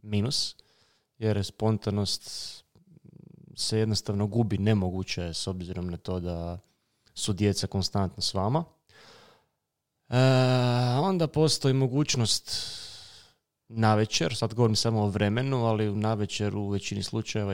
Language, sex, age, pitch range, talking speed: Croatian, male, 20-39, 100-125 Hz, 115 wpm